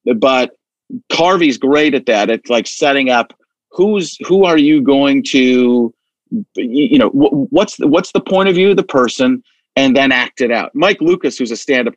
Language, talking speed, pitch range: English, 190 wpm, 125-195 Hz